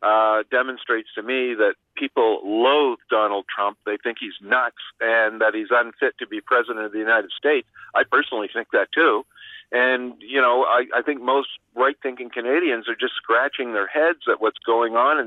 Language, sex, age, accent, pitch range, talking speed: English, male, 50-69, American, 120-160 Hz, 190 wpm